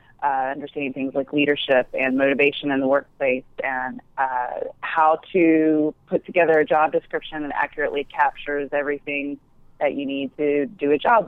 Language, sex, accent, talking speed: English, female, American, 160 wpm